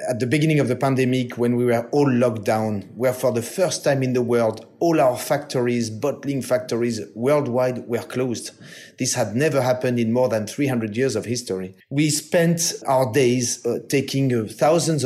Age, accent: 30-49, French